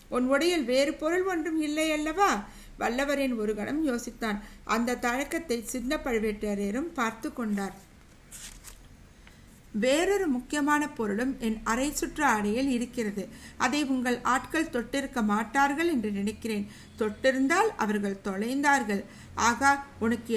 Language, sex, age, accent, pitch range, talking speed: Tamil, female, 60-79, native, 225-285 Hz, 110 wpm